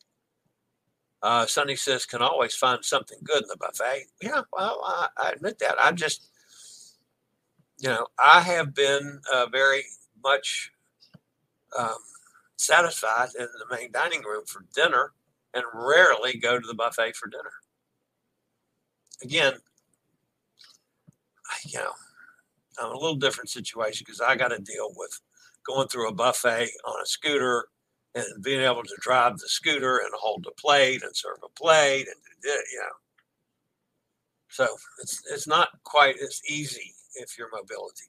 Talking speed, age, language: 150 wpm, 60-79, English